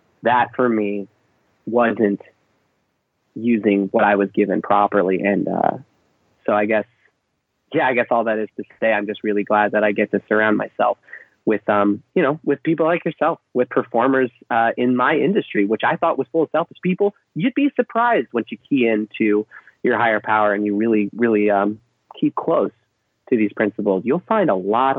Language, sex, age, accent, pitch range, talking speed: English, male, 30-49, American, 105-130 Hz, 190 wpm